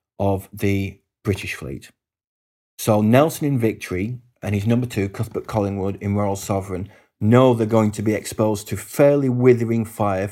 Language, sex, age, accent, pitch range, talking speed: English, male, 30-49, British, 100-110 Hz, 155 wpm